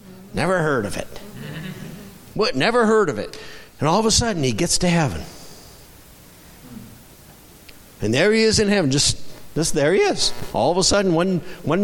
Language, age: English, 60-79